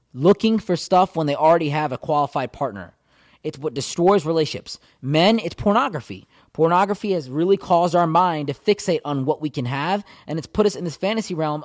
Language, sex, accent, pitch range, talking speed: English, male, American, 155-195 Hz, 195 wpm